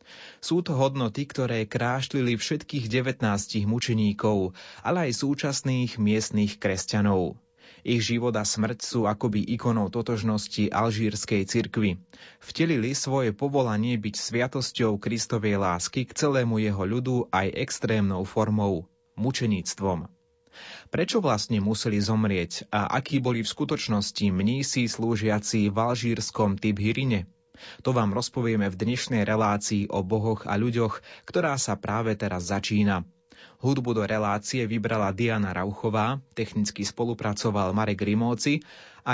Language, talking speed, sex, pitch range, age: Slovak, 120 wpm, male, 105-125 Hz, 30-49